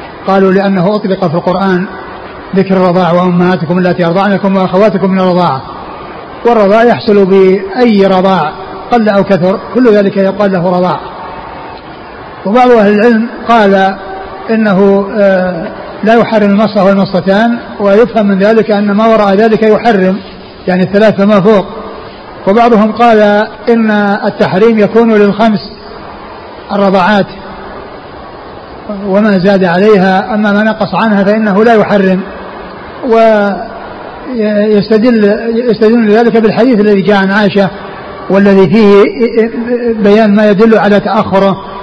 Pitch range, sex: 195-220 Hz, male